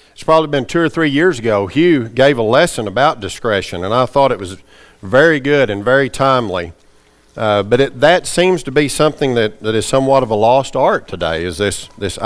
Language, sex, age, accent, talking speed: English, male, 50-69, American, 210 wpm